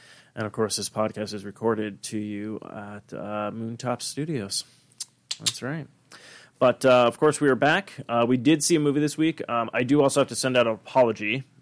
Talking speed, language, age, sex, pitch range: 205 wpm, English, 20-39, male, 110-135 Hz